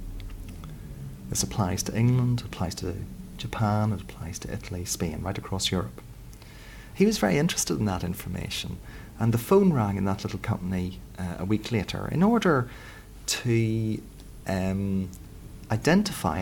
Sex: male